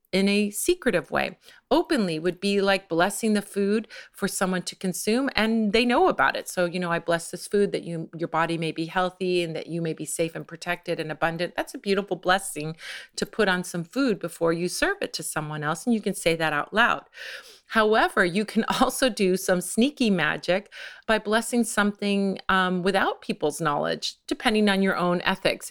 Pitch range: 170-215 Hz